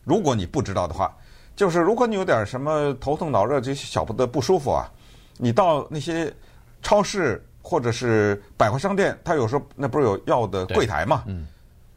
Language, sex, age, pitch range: Chinese, male, 50-69, 115-175 Hz